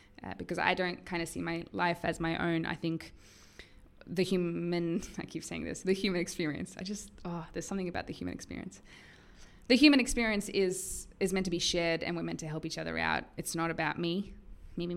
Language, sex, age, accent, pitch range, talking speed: English, female, 20-39, Australian, 145-195 Hz, 220 wpm